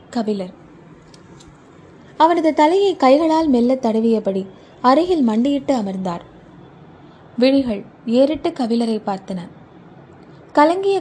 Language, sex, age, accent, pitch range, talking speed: Tamil, female, 20-39, native, 195-275 Hz, 75 wpm